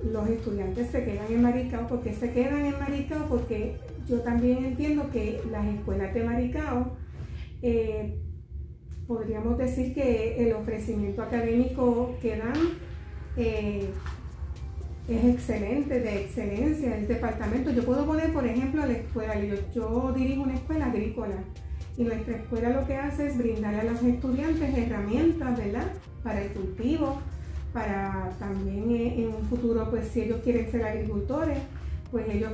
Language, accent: Spanish, American